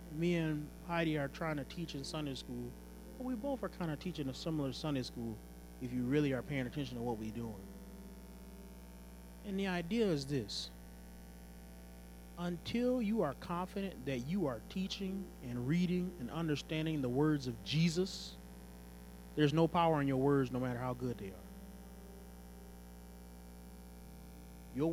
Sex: male